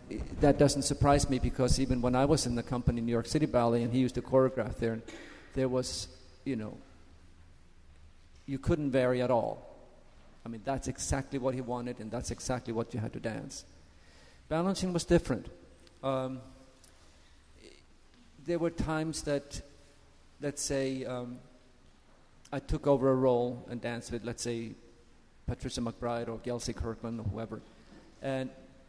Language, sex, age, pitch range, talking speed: English, male, 50-69, 120-145 Hz, 160 wpm